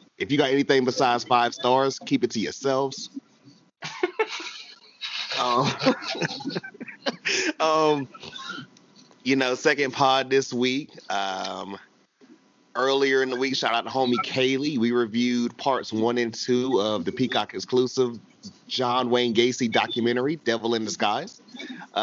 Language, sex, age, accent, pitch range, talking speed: English, male, 30-49, American, 125-155 Hz, 125 wpm